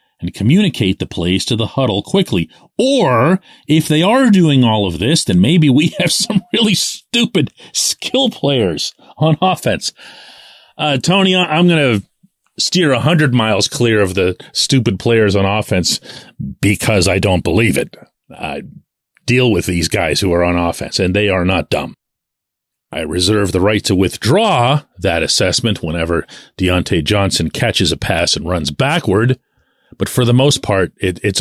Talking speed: 160 wpm